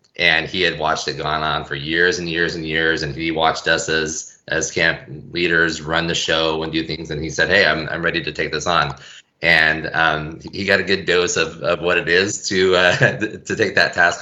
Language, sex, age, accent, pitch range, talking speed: English, male, 20-39, American, 75-80 Hz, 235 wpm